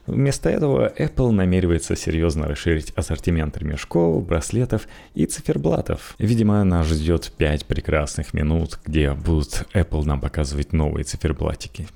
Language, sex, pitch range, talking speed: Russian, male, 75-100 Hz, 120 wpm